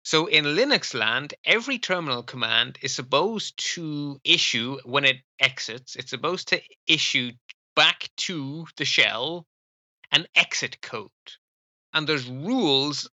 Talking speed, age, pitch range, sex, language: 130 wpm, 30-49, 120-150 Hz, male, English